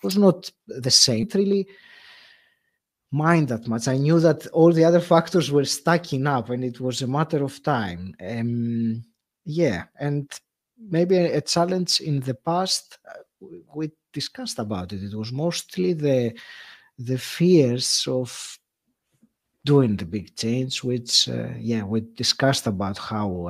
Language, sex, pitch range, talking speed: English, male, 115-160 Hz, 150 wpm